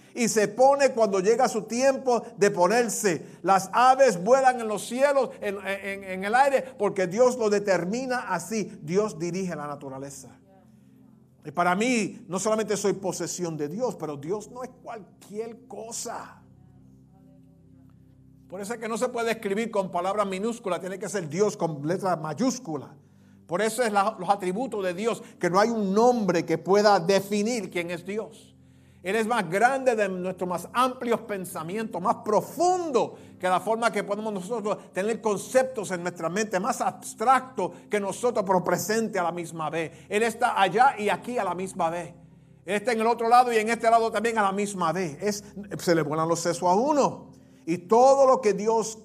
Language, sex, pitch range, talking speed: English, male, 170-225 Hz, 185 wpm